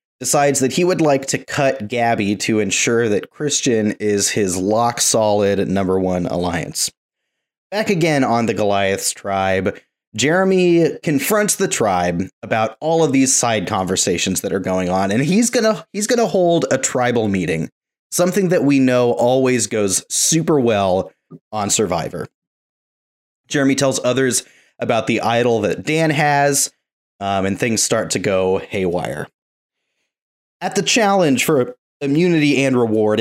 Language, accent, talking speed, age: English, American, 145 wpm, 30-49